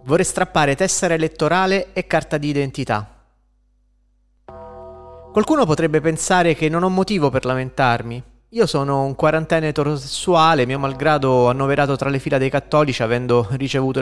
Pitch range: 120-160 Hz